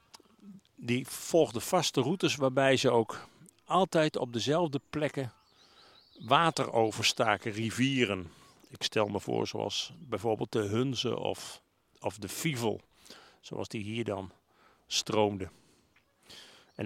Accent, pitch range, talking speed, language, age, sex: Dutch, 115-145 Hz, 115 wpm, Dutch, 50-69, male